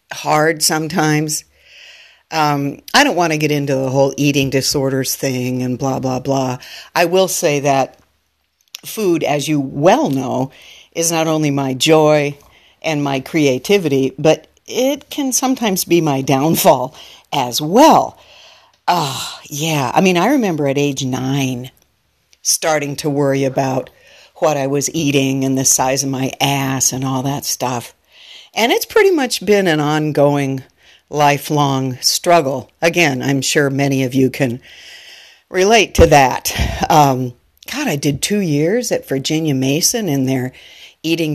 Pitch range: 135-165 Hz